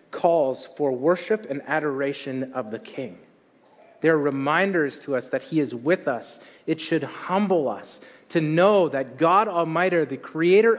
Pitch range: 145-195 Hz